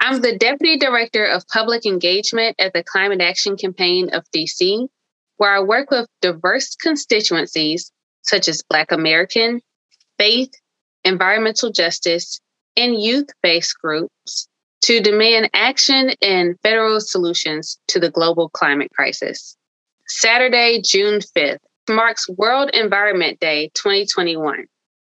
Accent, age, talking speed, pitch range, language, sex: American, 20-39, 115 wpm, 180-240 Hz, English, female